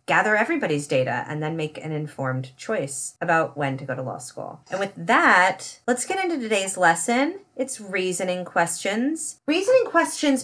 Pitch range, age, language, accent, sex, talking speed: 160-215 Hz, 30-49, English, American, female, 165 wpm